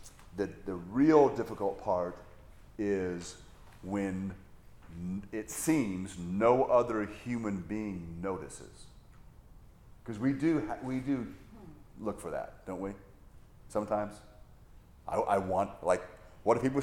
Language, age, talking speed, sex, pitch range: English, 40-59, 120 wpm, male, 95-135 Hz